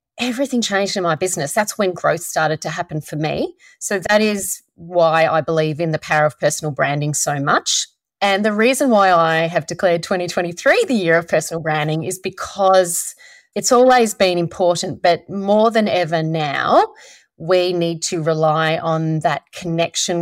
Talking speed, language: 170 wpm, English